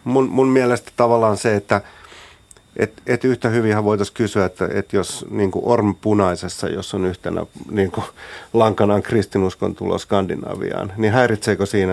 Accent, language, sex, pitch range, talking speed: native, Finnish, male, 95-115 Hz, 155 wpm